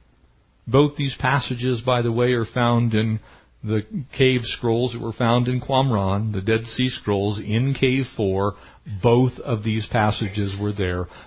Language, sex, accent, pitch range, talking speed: English, male, American, 100-140 Hz, 160 wpm